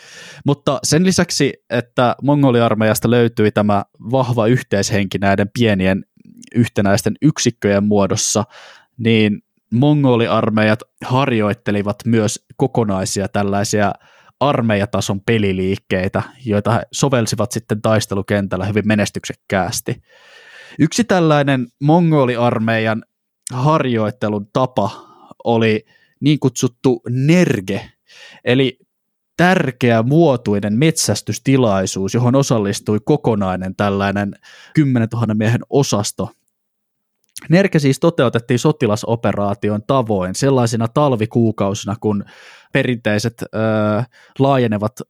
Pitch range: 105-130 Hz